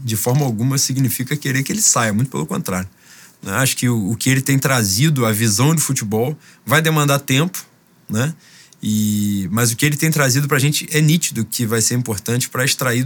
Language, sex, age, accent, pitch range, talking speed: Portuguese, male, 20-39, Brazilian, 115-155 Hz, 200 wpm